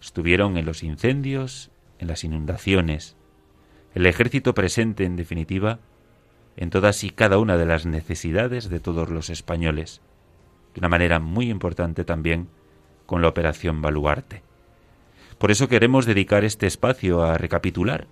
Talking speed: 140 wpm